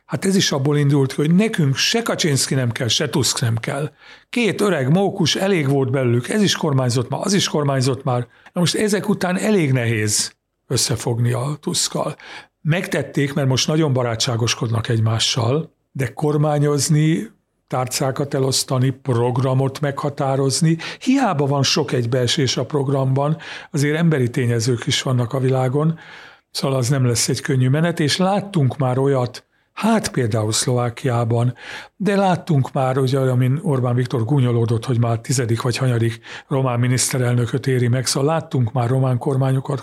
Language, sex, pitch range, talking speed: Hungarian, male, 130-165 Hz, 150 wpm